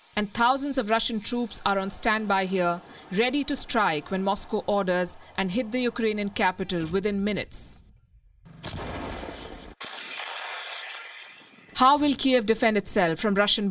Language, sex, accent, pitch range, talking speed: English, female, Indian, 210-260 Hz, 125 wpm